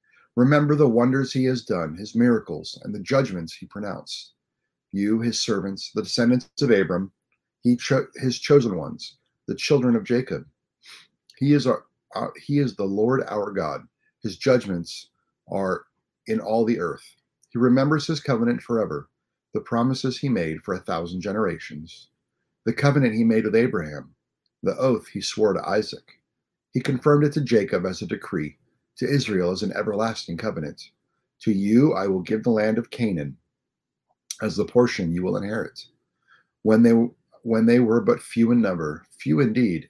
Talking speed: 165 wpm